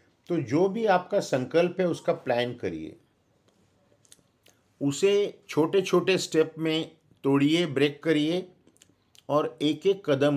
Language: Hindi